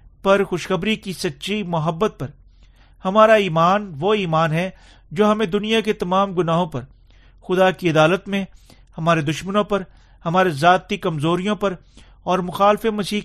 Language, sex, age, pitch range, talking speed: Urdu, male, 40-59, 155-200 Hz, 145 wpm